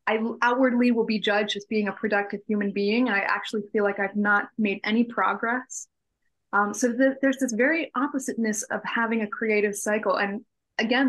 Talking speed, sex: 190 wpm, female